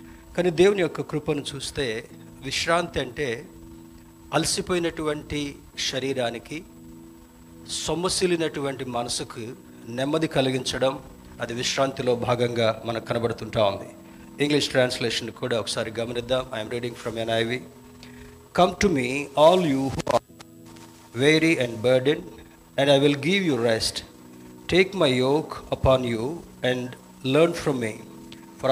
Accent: native